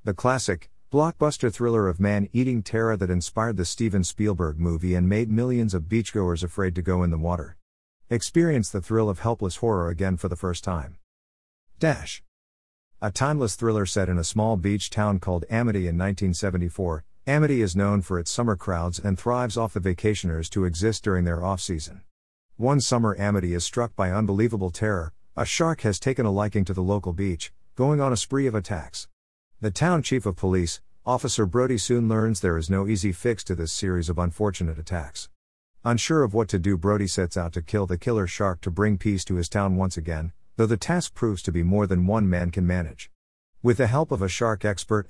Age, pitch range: 50-69, 90-115 Hz